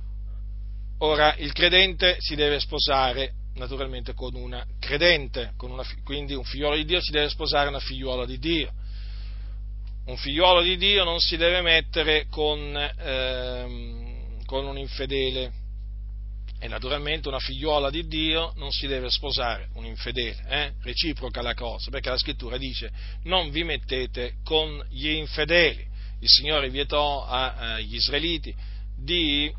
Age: 40-59